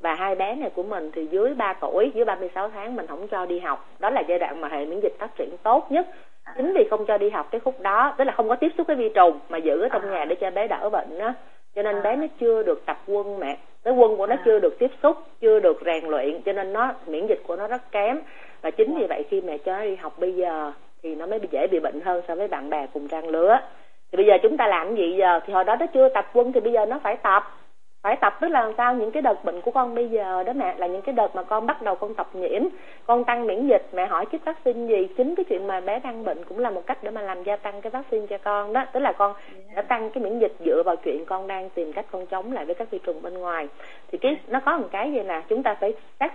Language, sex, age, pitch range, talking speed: Vietnamese, female, 30-49, 185-275 Hz, 295 wpm